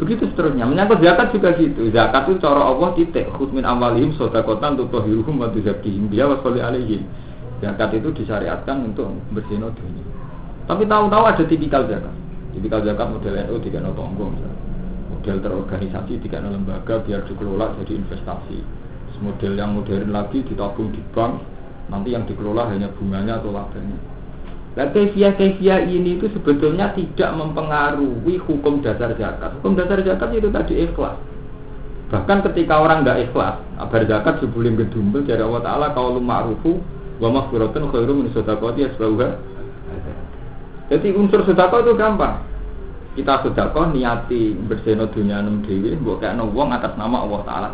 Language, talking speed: Indonesian, 145 wpm